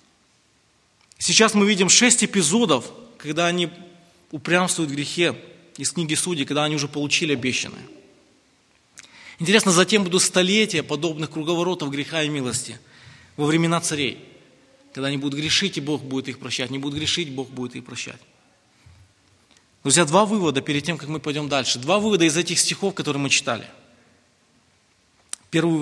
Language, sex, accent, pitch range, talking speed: Russian, male, native, 130-175 Hz, 150 wpm